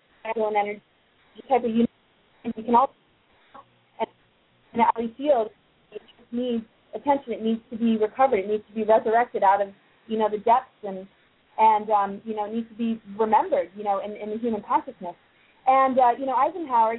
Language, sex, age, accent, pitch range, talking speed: English, female, 30-49, American, 220-250 Hz, 195 wpm